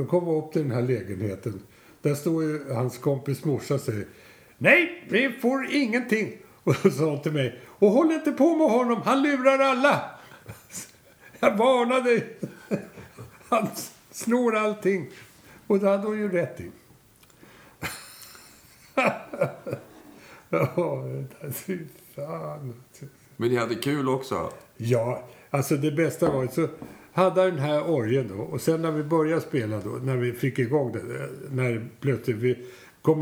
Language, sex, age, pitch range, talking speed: Swedish, male, 60-79, 120-170 Hz, 145 wpm